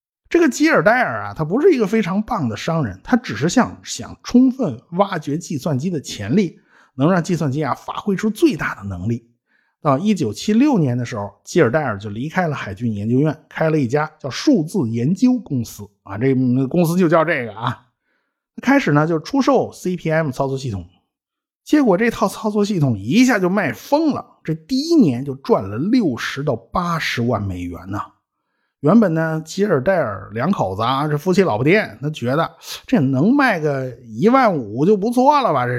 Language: Chinese